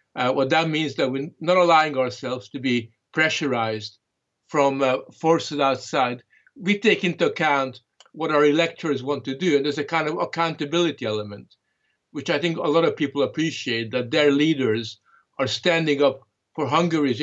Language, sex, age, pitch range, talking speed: English, male, 50-69, 125-165 Hz, 170 wpm